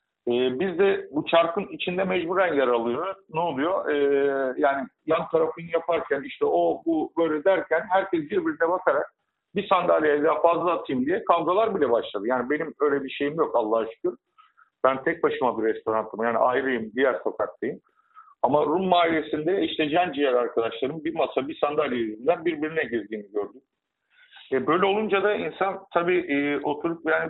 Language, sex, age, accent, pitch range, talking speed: Turkish, male, 50-69, native, 140-195 Hz, 155 wpm